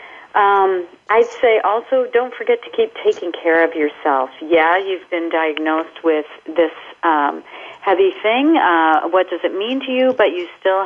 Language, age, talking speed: English, 50-69, 170 wpm